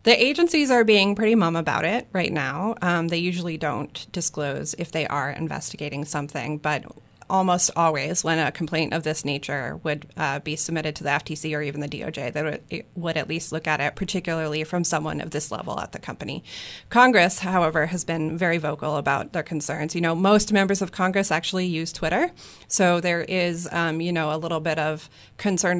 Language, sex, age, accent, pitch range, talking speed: English, female, 30-49, American, 155-185 Hz, 200 wpm